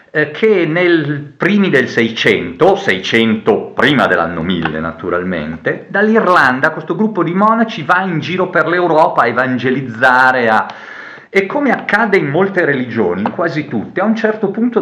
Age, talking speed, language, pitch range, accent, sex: 40-59, 140 wpm, Italian, 120-180 Hz, native, male